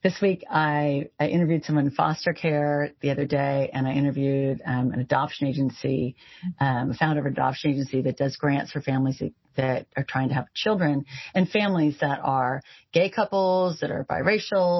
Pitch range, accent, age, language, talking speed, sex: 140-180 Hz, American, 40-59, English, 185 wpm, female